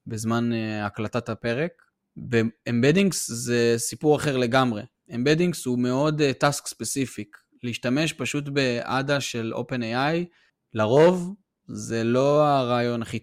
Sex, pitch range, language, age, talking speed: male, 115-145 Hz, Hebrew, 20-39, 120 wpm